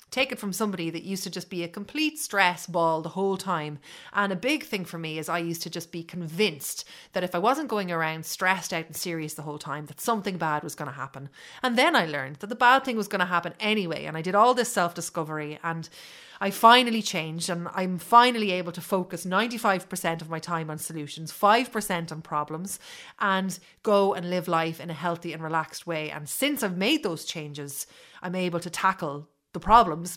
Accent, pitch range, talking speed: Irish, 165-210 Hz, 215 wpm